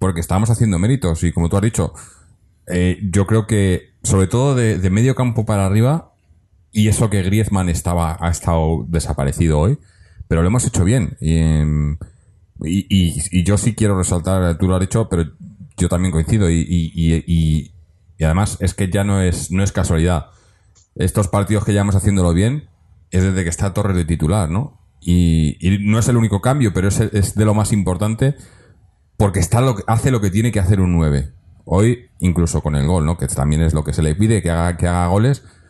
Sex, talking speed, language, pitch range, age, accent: male, 200 wpm, Spanish, 85-105 Hz, 30-49, Spanish